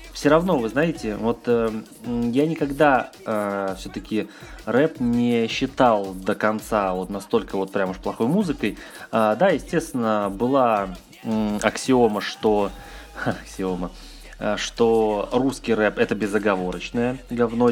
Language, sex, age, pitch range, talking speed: Russian, male, 20-39, 100-120 Hz, 125 wpm